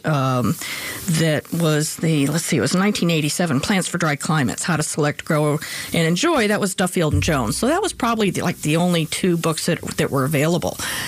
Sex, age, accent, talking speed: female, 50-69, American, 205 wpm